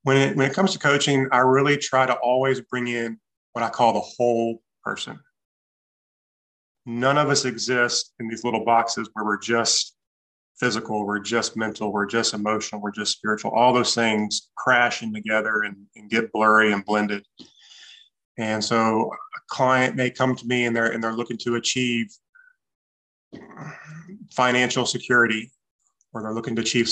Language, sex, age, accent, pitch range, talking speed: English, male, 30-49, American, 110-130 Hz, 165 wpm